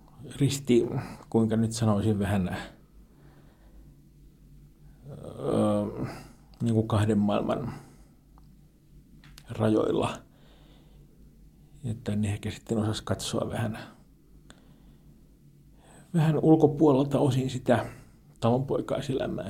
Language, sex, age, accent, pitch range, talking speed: Finnish, male, 50-69, native, 110-135 Hz, 70 wpm